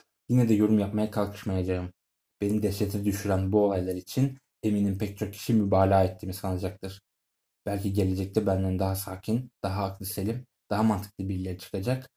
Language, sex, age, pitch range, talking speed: Turkish, male, 20-39, 95-110 Hz, 145 wpm